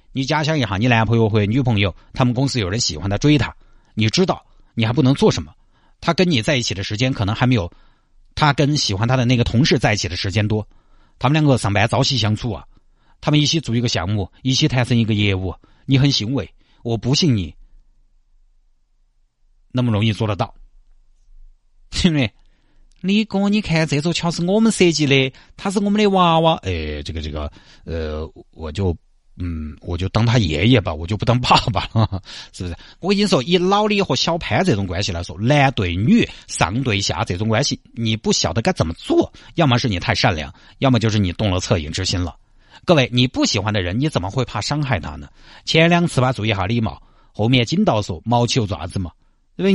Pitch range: 100-145 Hz